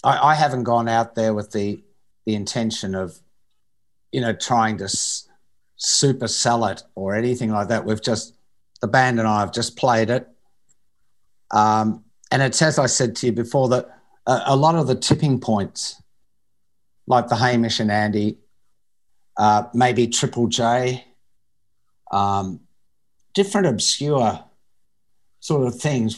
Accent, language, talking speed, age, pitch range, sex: Australian, English, 140 wpm, 50-69, 105-125 Hz, male